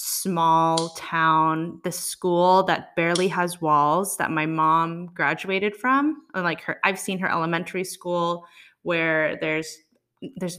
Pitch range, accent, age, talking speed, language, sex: 160-185 Hz, American, 20-39, 130 wpm, English, female